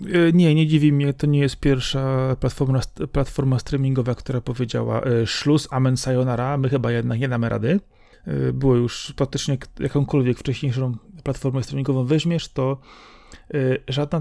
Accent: native